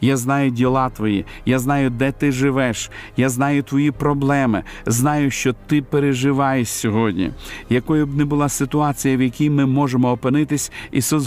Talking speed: 155 wpm